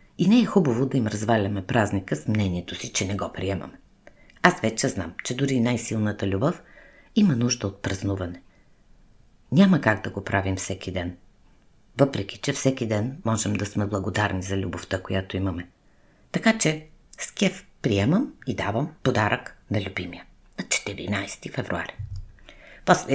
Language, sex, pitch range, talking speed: Bulgarian, female, 100-145 Hz, 155 wpm